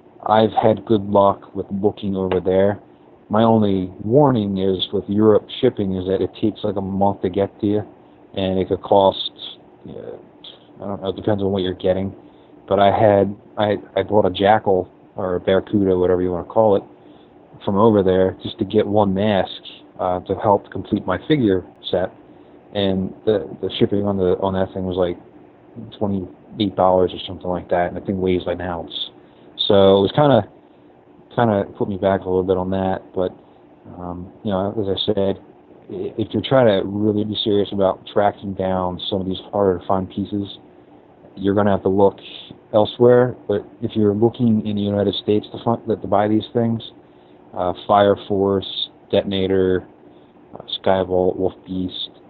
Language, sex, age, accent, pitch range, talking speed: English, male, 30-49, American, 95-105 Hz, 185 wpm